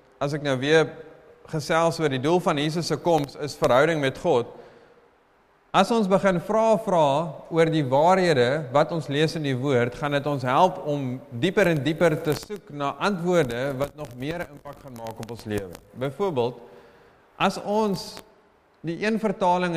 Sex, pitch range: male, 140-175 Hz